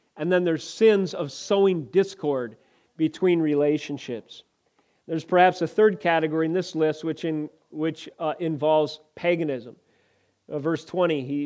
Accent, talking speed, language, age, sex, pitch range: American, 140 wpm, English, 40-59, male, 155-190 Hz